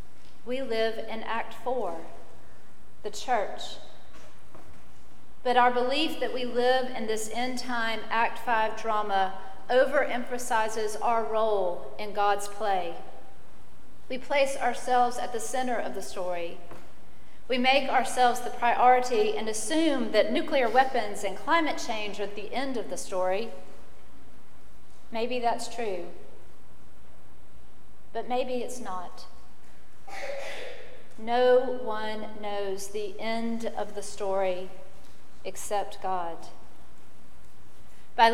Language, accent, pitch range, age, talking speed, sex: English, American, 210-250 Hz, 40-59, 115 wpm, female